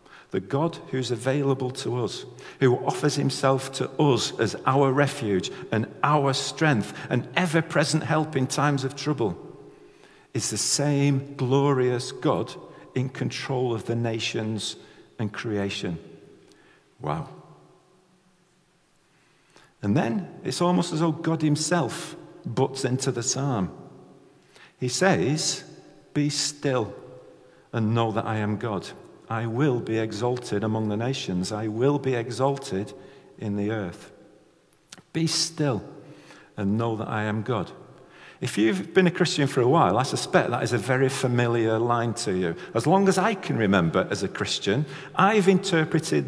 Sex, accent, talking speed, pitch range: male, British, 145 wpm, 120-165 Hz